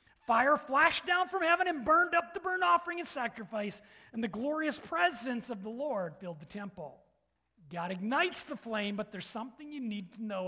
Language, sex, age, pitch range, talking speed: English, male, 40-59, 205-300 Hz, 195 wpm